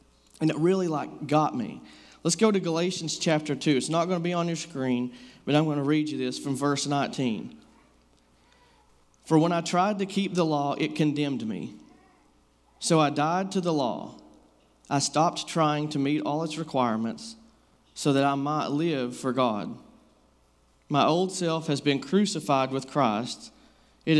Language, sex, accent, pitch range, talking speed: English, male, American, 125-160 Hz, 175 wpm